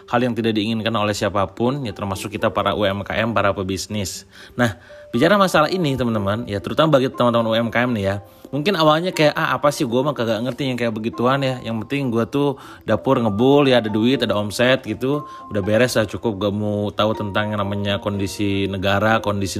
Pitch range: 105-135 Hz